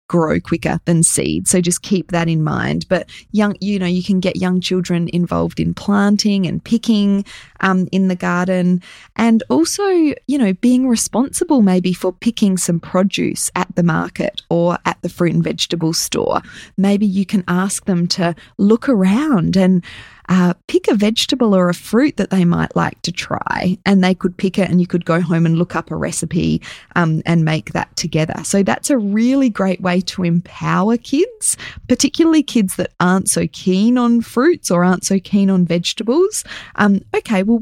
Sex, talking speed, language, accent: female, 185 wpm, English, Australian